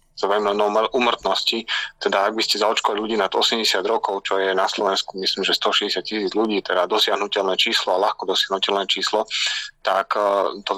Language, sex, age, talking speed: Slovak, male, 30-49, 165 wpm